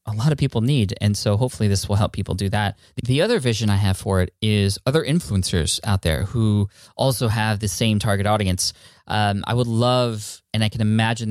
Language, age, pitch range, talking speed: English, 20-39, 100-120 Hz, 220 wpm